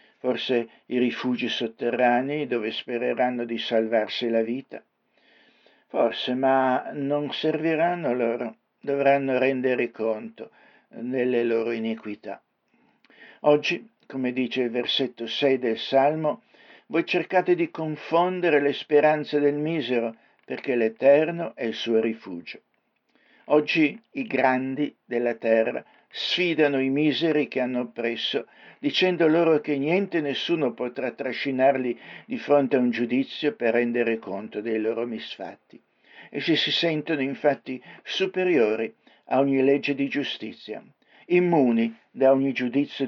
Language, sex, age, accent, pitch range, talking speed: Italian, male, 60-79, native, 120-145 Hz, 120 wpm